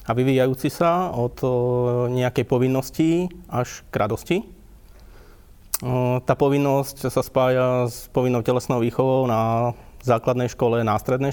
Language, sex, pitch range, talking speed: Slovak, male, 120-145 Hz, 110 wpm